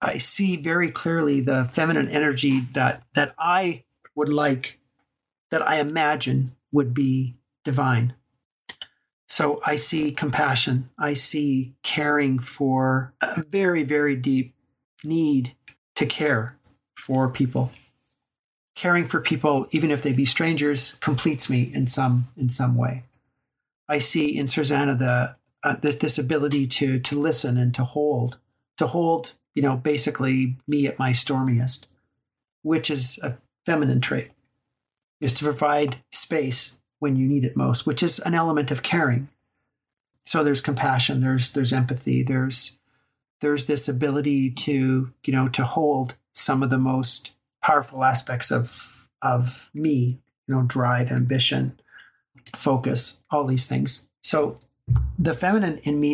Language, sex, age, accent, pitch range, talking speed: English, male, 40-59, American, 130-150 Hz, 140 wpm